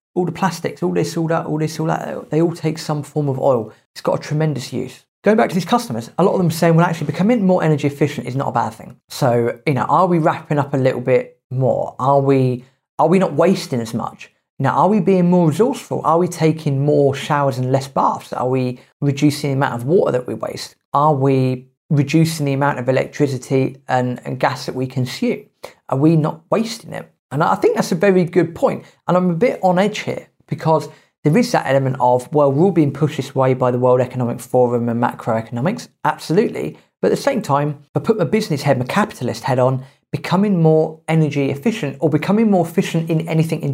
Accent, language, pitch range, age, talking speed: British, English, 130-170 Hz, 30-49, 230 wpm